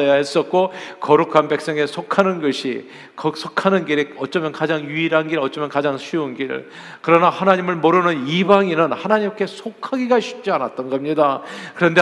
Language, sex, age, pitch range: Korean, male, 40-59, 145-200 Hz